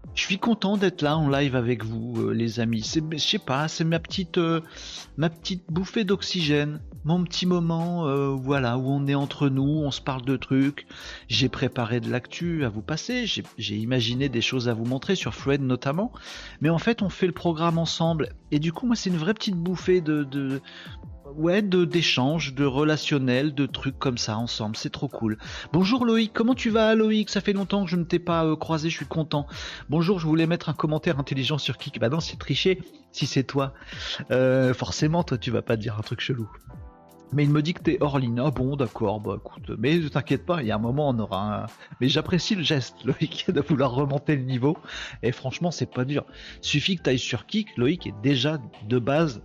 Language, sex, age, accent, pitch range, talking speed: French, male, 40-59, French, 125-165 Hz, 215 wpm